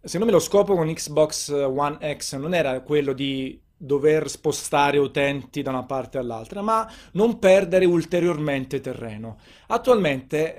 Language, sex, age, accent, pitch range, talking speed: Italian, male, 30-49, native, 130-170 Hz, 140 wpm